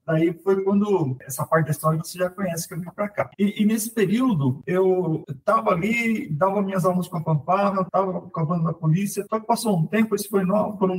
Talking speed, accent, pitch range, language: 215 wpm, Brazilian, 160-205 Hz, Portuguese